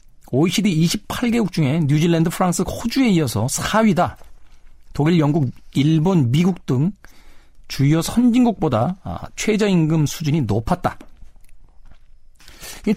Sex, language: male, Korean